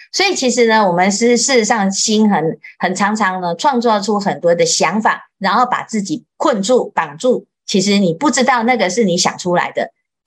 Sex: female